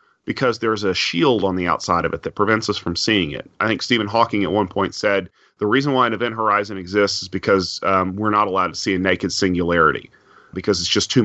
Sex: male